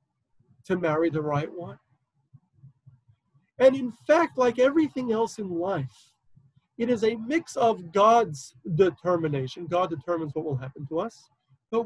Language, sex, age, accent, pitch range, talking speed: English, male, 40-59, American, 145-200 Hz, 140 wpm